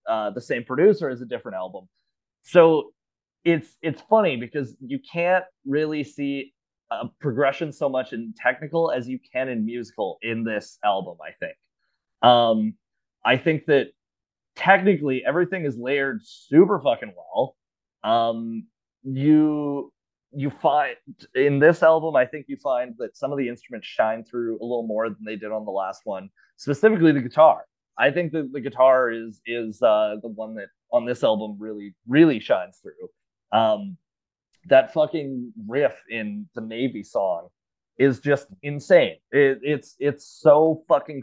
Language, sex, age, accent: English, male, 30-49, American